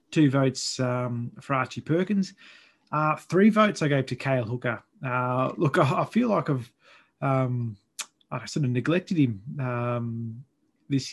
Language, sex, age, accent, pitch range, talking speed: English, male, 20-39, Australian, 120-150 Hz, 155 wpm